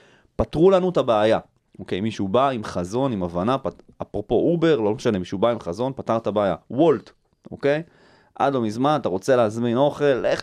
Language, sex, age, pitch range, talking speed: Hebrew, male, 30-49, 95-130 Hz, 200 wpm